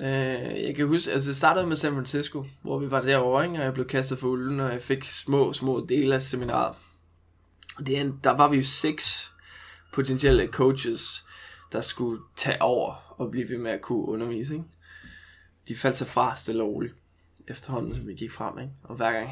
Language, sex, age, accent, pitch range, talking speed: Danish, male, 20-39, native, 115-140 Hz, 200 wpm